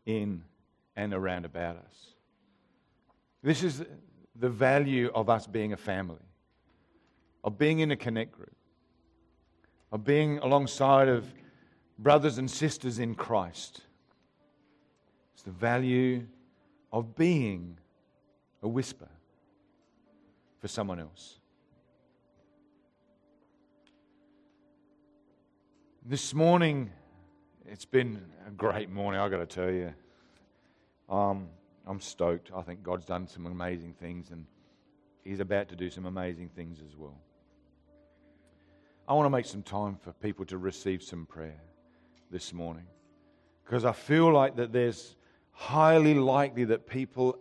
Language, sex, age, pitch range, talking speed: English, male, 50-69, 90-135 Hz, 120 wpm